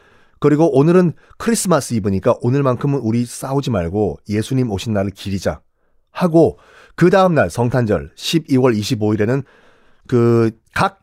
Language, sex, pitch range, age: Korean, male, 120-180 Hz, 40-59